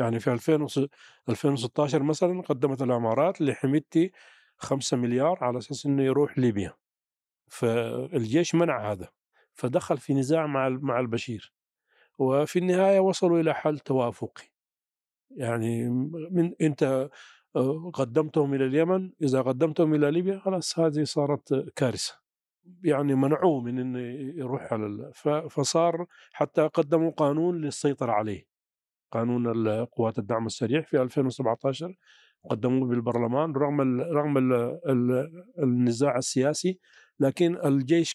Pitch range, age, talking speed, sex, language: 125-160 Hz, 40-59, 115 wpm, male, Arabic